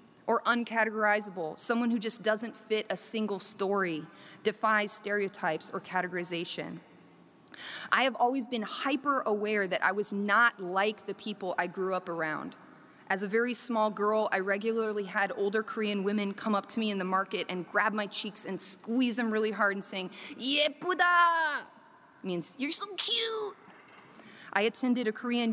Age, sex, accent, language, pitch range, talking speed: 30-49, female, American, English, 190-235 Hz, 160 wpm